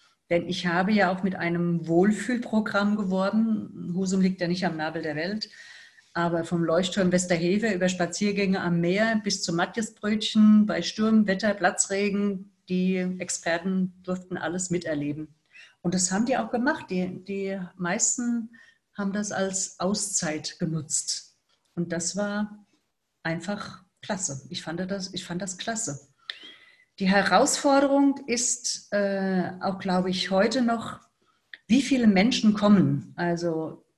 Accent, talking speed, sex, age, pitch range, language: German, 135 wpm, female, 50-69, 175-210 Hz, German